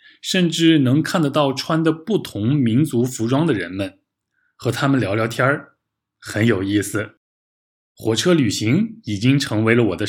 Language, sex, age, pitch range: Chinese, male, 20-39, 110-140 Hz